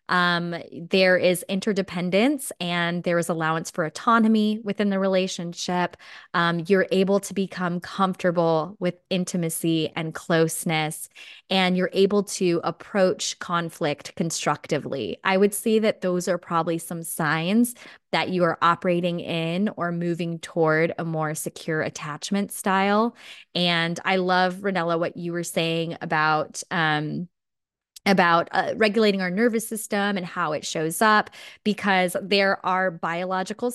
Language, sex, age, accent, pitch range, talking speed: English, female, 20-39, American, 170-210 Hz, 135 wpm